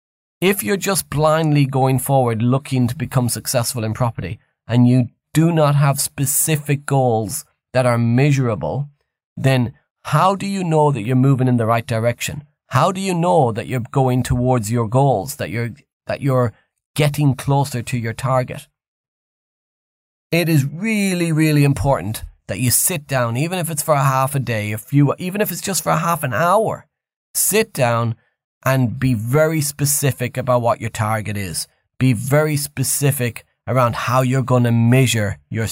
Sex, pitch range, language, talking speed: male, 120-155 Hz, English, 170 wpm